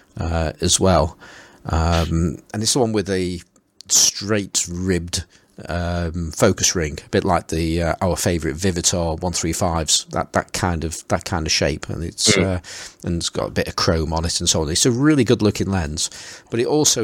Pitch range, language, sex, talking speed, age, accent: 85-105 Hz, English, male, 200 wpm, 40-59, British